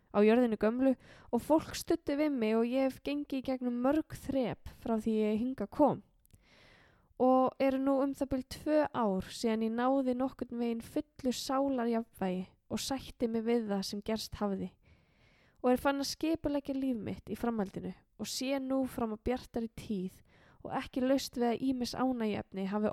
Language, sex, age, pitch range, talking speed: English, female, 10-29, 215-265 Hz, 175 wpm